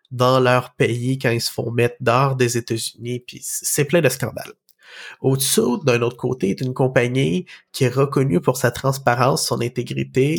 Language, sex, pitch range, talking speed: French, male, 125-145 Hz, 180 wpm